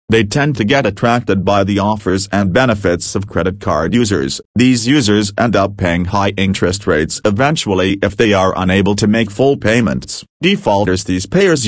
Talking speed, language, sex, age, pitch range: 175 wpm, English, male, 40-59, 95-120 Hz